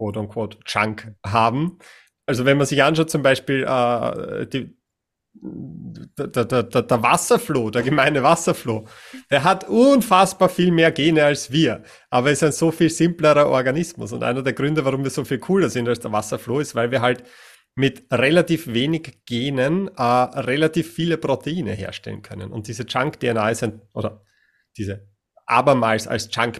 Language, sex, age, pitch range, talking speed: German, male, 30-49, 115-145 Hz, 165 wpm